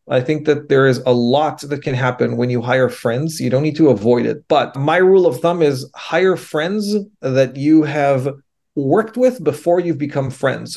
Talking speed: 205 wpm